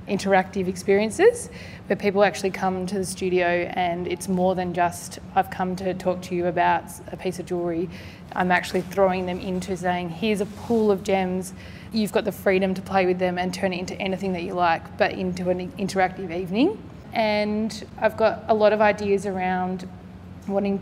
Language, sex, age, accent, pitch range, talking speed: English, female, 20-39, Australian, 185-200 Hz, 190 wpm